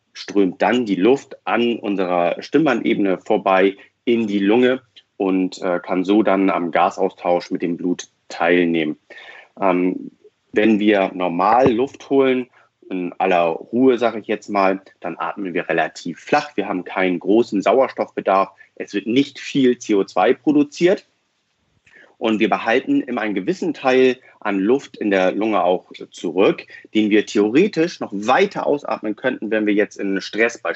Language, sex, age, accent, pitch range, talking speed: German, male, 40-59, German, 95-125 Hz, 150 wpm